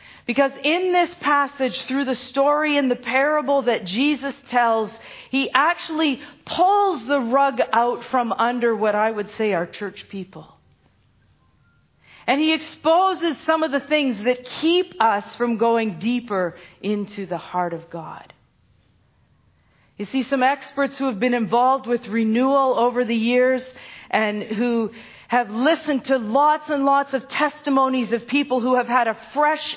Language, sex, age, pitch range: English, female, 40-59, 230-280 Hz